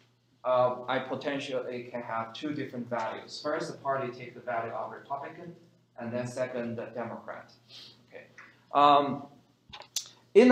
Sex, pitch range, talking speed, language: male, 120-150 Hz, 135 wpm, English